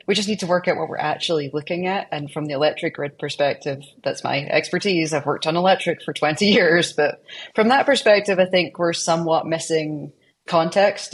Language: English